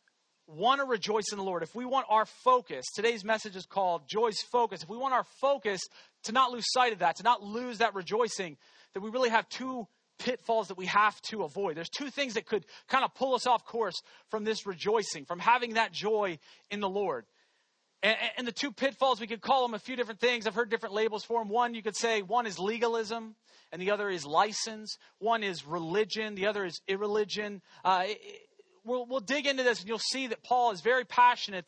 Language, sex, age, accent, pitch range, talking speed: English, male, 40-59, American, 200-245 Hz, 225 wpm